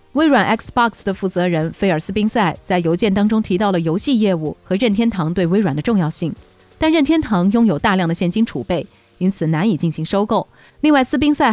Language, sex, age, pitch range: Chinese, female, 30-49, 170-230 Hz